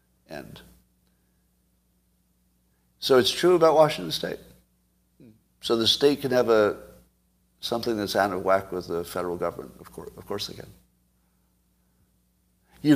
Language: English